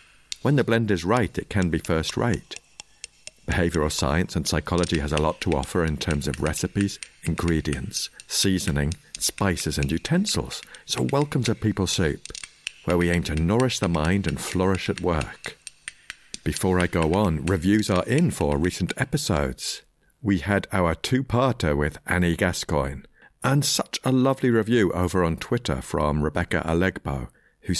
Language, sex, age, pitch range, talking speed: English, male, 50-69, 80-110 Hz, 155 wpm